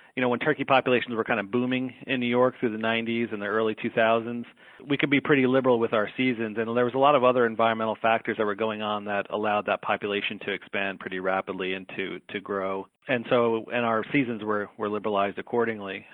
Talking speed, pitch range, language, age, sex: 225 wpm, 105-120 Hz, English, 40-59, male